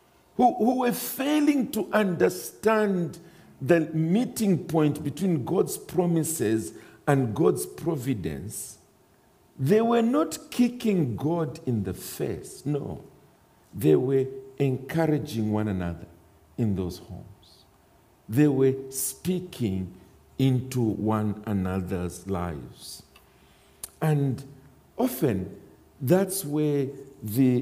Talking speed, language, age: 95 wpm, English, 50-69